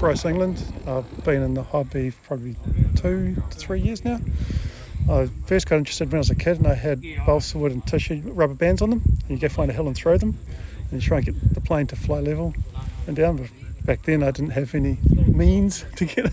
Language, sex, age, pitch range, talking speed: English, male, 40-59, 95-155 Hz, 240 wpm